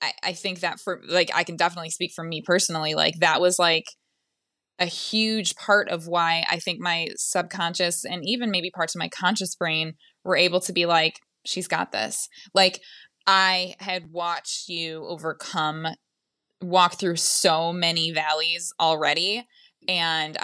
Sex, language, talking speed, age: female, English, 160 wpm, 20-39